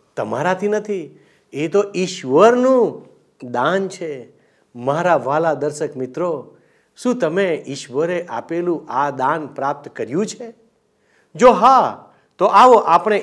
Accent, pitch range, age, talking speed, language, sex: native, 135-210 Hz, 50-69, 120 wpm, Gujarati, male